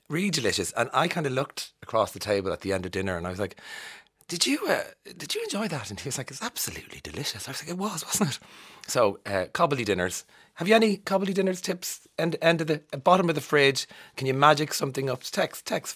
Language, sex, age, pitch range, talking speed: English, male, 30-49, 100-155 Hz, 250 wpm